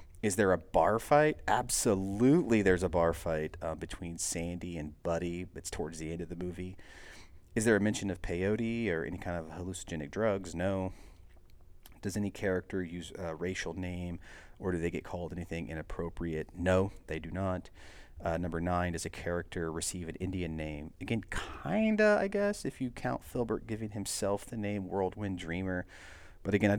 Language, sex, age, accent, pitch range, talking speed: English, male, 30-49, American, 80-100 Hz, 185 wpm